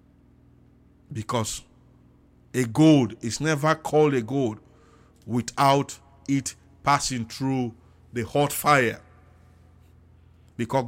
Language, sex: English, male